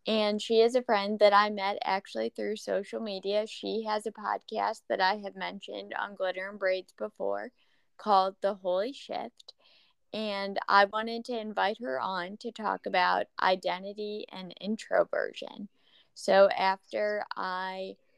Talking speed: 150 wpm